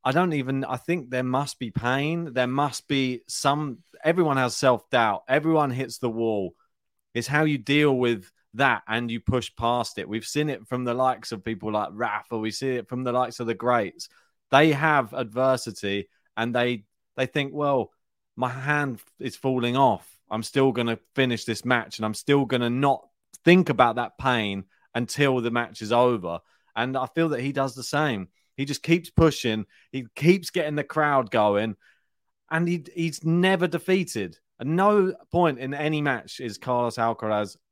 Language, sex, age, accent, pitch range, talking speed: English, male, 30-49, British, 120-165 Hz, 185 wpm